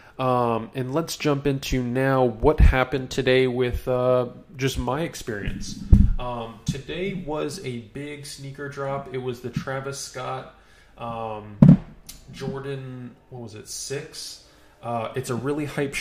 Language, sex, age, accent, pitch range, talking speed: English, male, 20-39, American, 120-140 Hz, 140 wpm